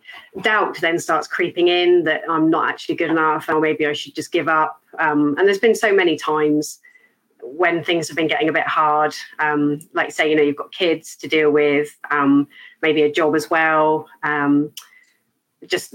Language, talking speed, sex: English, 195 wpm, female